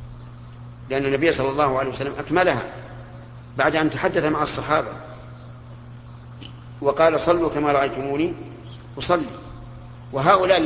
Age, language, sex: 50-69, Arabic, male